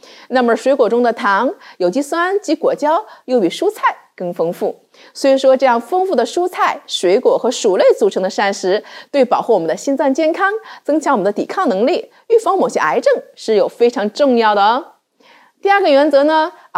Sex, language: female, Chinese